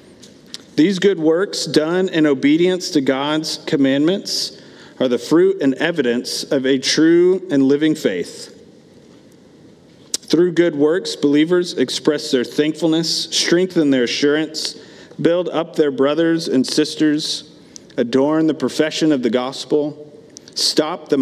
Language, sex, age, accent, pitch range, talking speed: English, male, 40-59, American, 125-155 Hz, 125 wpm